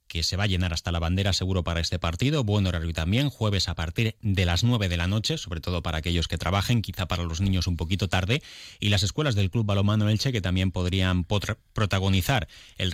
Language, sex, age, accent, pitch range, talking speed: Spanish, male, 30-49, Spanish, 85-105 Hz, 230 wpm